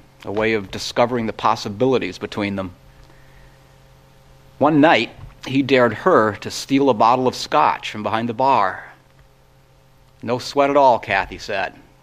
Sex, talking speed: male, 145 wpm